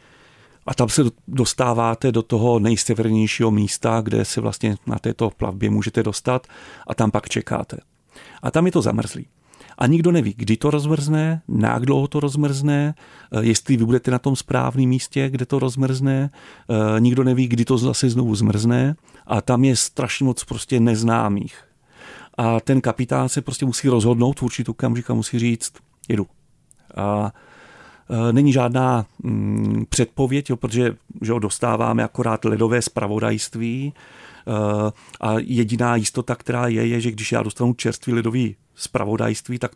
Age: 40-59